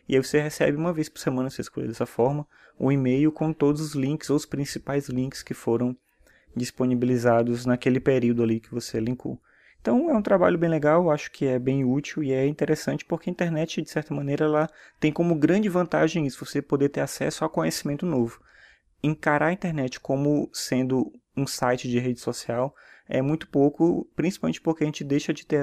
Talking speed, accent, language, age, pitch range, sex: 195 wpm, Brazilian, Portuguese, 20-39, 120-150 Hz, male